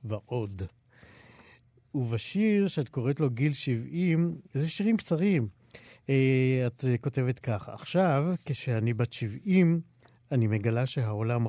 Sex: male